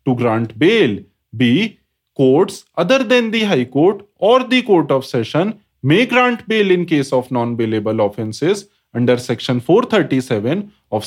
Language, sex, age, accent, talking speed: English, male, 30-49, Indian, 150 wpm